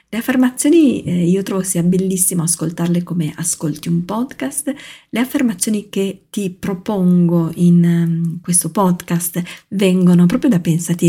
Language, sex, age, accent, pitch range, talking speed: Italian, female, 40-59, native, 175-235 Hz, 135 wpm